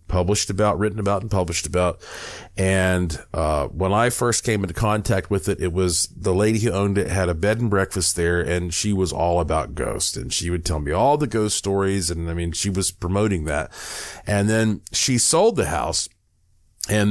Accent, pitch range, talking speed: American, 90-115 Hz, 205 wpm